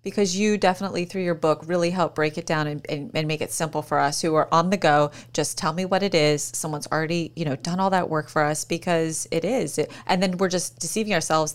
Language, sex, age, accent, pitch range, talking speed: English, female, 30-49, American, 150-190 Hz, 260 wpm